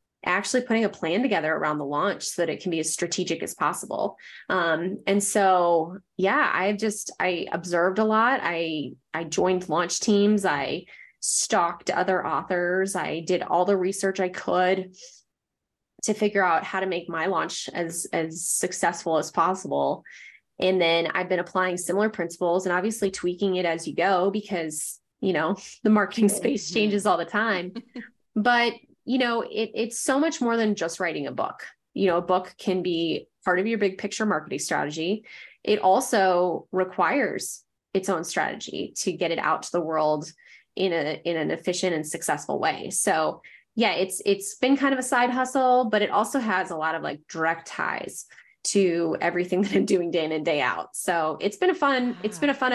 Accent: American